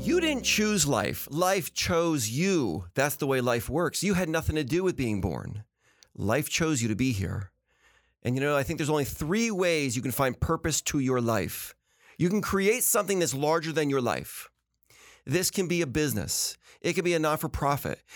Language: English